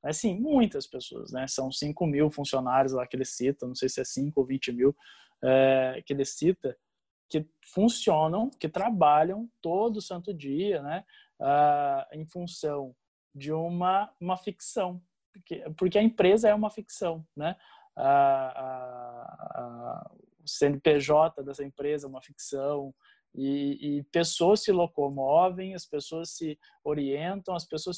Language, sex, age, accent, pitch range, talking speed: Portuguese, male, 20-39, Brazilian, 140-185 Hz, 140 wpm